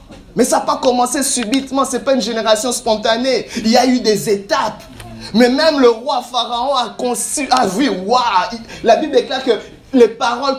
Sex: male